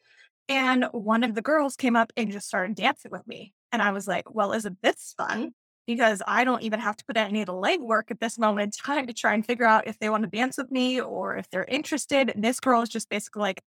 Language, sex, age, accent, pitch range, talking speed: English, female, 20-39, American, 210-250 Hz, 265 wpm